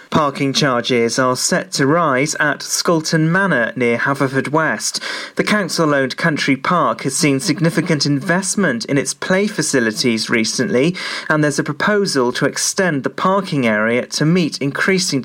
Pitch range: 130-170 Hz